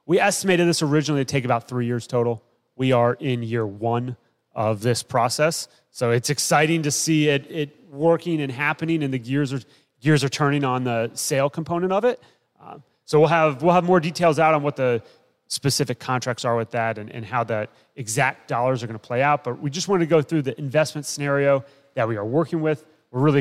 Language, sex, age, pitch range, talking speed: English, male, 30-49, 125-155 Hz, 220 wpm